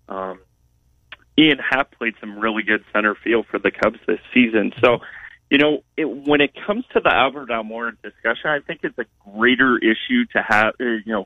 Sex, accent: male, American